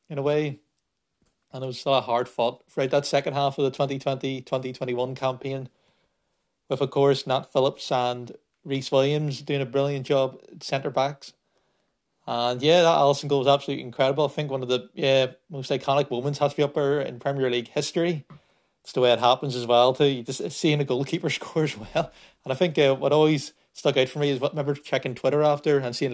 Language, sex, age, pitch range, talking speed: English, male, 30-49, 125-145 Hz, 225 wpm